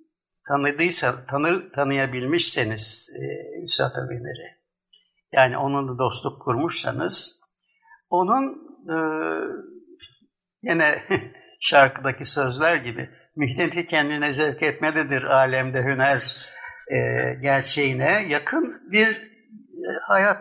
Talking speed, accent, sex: 65 wpm, native, male